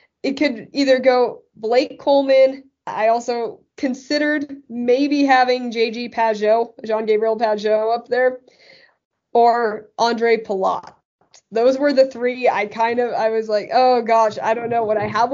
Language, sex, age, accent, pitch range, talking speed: English, female, 20-39, American, 210-250 Hz, 150 wpm